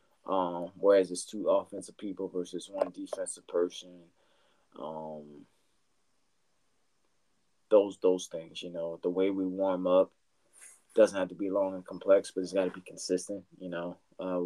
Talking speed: 155 wpm